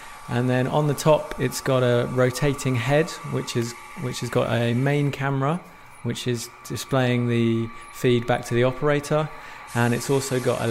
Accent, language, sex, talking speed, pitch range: British, English, male, 180 wpm, 115-130 Hz